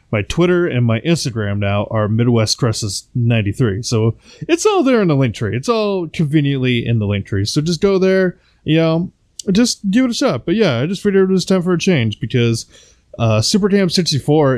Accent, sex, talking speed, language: American, male, 205 wpm, English